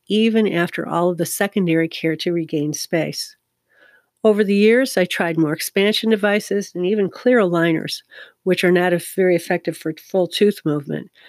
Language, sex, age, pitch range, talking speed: English, female, 50-69, 165-200 Hz, 165 wpm